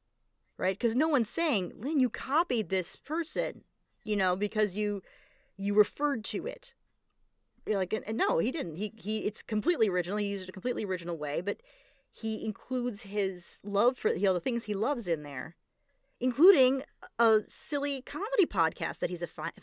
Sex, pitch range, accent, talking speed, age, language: female, 195-270 Hz, American, 185 wpm, 30-49, English